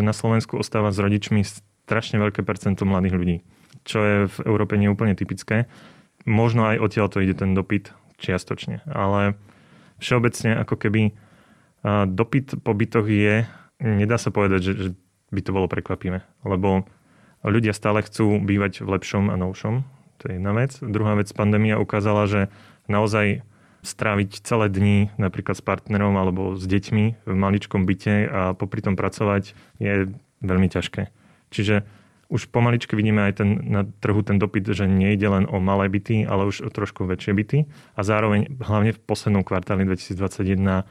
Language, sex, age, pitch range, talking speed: Slovak, male, 20-39, 95-110 Hz, 155 wpm